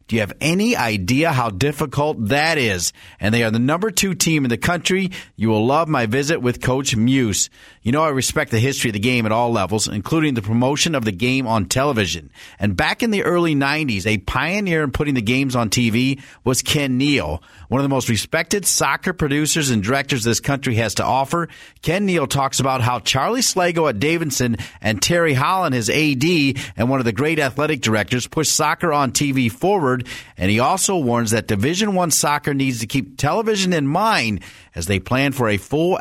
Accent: American